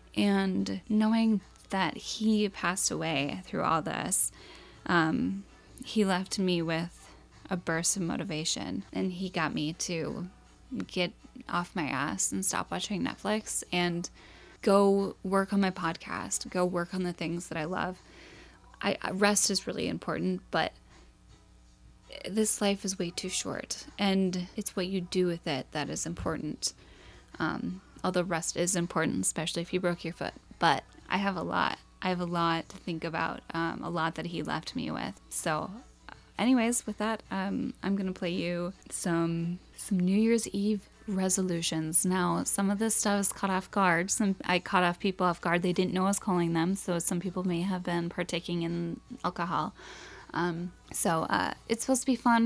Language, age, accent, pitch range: English, 10-29, American, 170-200 Hz